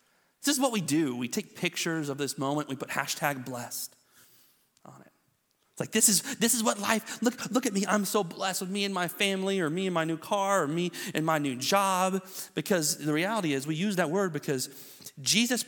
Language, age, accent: English, 40-59, American